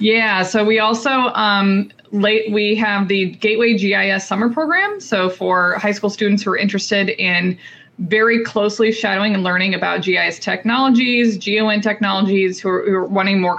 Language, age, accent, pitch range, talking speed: English, 20-39, American, 195-225 Hz, 160 wpm